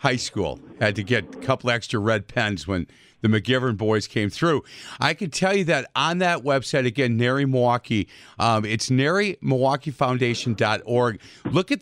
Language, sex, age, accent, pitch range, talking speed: English, male, 50-69, American, 120-150 Hz, 165 wpm